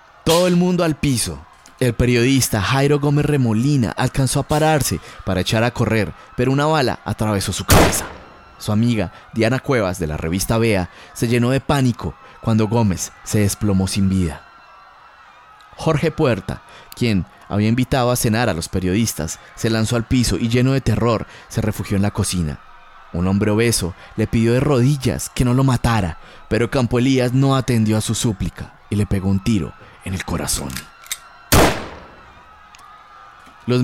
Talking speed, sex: 165 wpm, male